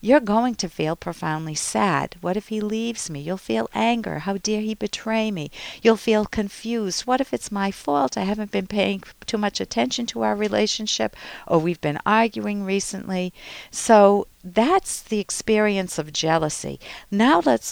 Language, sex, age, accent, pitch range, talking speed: English, female, 50-69, American, 175-240 Hz, 170 wpm